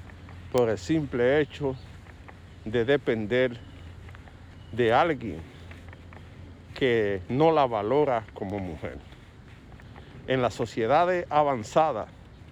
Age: 50-69